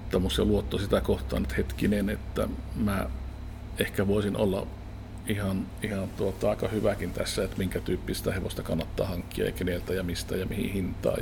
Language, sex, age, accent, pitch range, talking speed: Finnish, male, 50-69, native, 95-110 Hz, 150 wpm